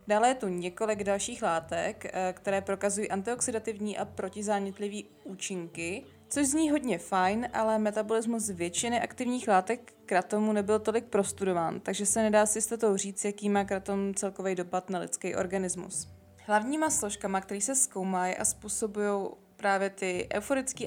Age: 20-39